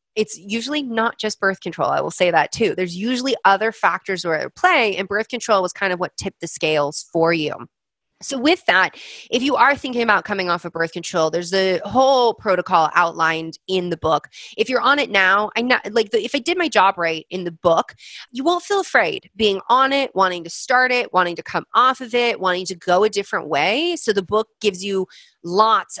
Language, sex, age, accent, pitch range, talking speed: English, female, 30-49, American, 180-250 Hz, 225 wpm